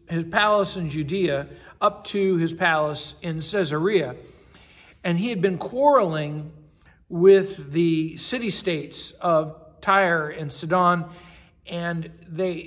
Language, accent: English, American